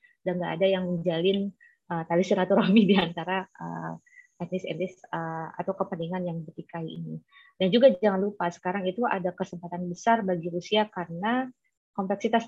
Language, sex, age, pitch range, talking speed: Indonesian, female, 20-39, 170-200 Hz, 160 wpm